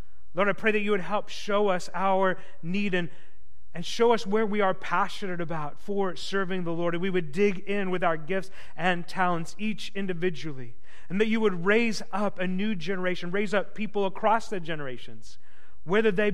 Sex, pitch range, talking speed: male, 140-195 Hz, 195 wpm